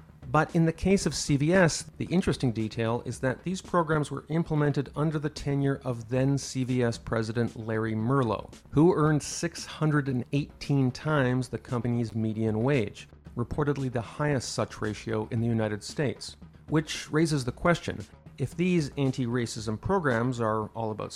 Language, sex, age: English, male, 40-59